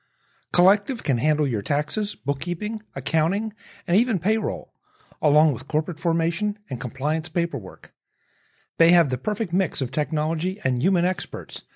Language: English